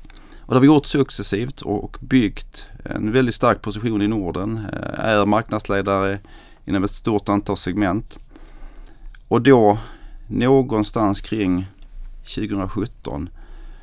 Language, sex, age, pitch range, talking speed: Swedish, male, 40-59, 95-115 Hz, 115 wpm